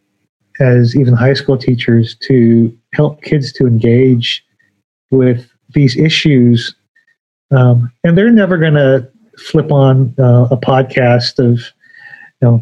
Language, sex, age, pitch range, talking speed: English, male, 40-59, 125-150 Hz, 125 wpm